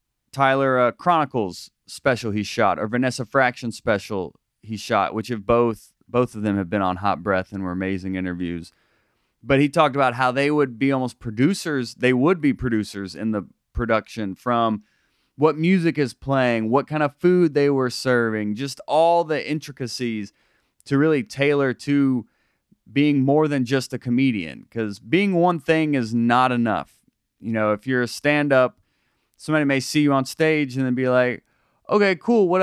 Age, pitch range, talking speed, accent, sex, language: 30-49, 110-145 Hz, 175 wpm, American, male, English